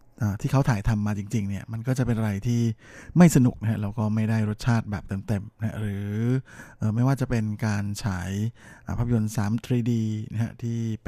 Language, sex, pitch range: Thai, male, 105-120 Hz